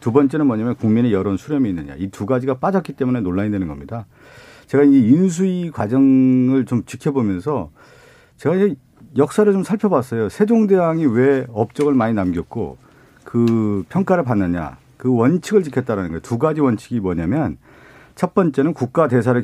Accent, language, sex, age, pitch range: native, Korean, male, 50-69, 115-170 Hz